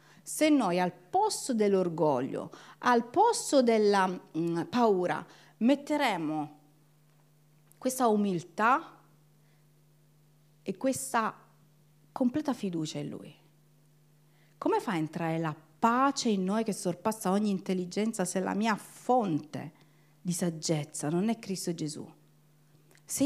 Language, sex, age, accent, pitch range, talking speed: Italian, female, 40-59, native, 150-255 Hz, 110 wpm